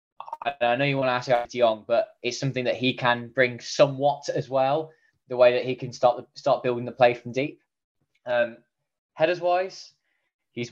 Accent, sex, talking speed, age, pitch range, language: British, male, 195 wpm, 10-29, 115-135 Hz, English